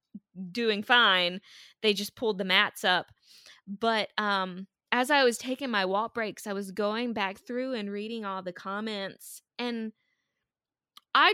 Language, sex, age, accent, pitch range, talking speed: English, female, 20-39, American, 180-250 Hz, 155 wpm